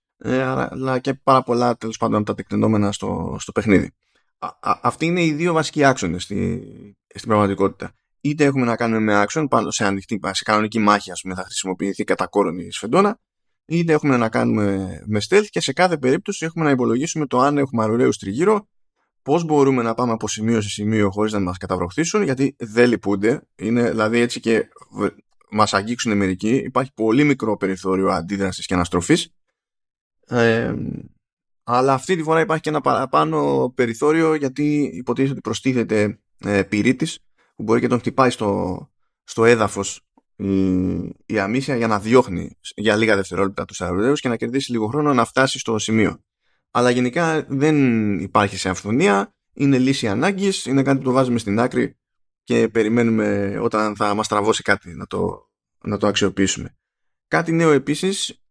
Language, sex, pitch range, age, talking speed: Greek, male, 105-135 Hz, 20-39, 165 wpm